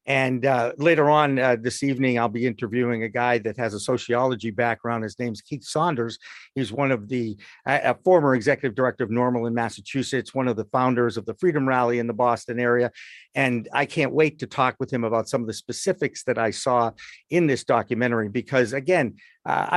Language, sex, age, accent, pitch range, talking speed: English, male, 50-69, American, 120-145 Hz, 205 wpm